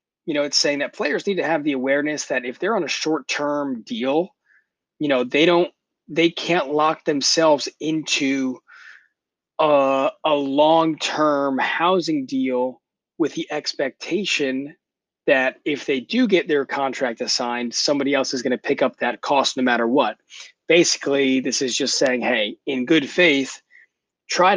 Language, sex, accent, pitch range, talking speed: English, male, American, 130-160 Hz, 160 wpm